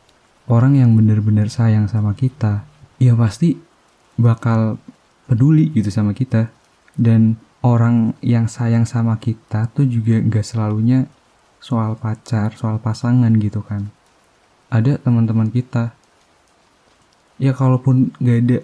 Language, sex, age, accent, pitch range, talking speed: Indonesian, male, 20-39, native, 110-125 Hz, 115 wpm